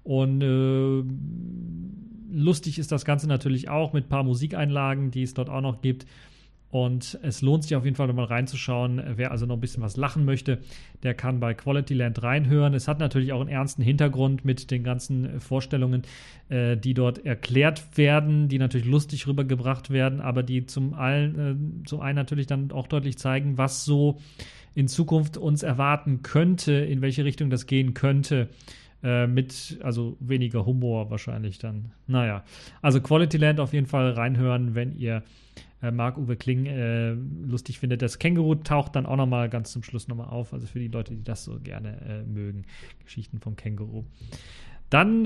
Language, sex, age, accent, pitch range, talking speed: German, male, 40-59, German, 125-150 Hz, 180 wpm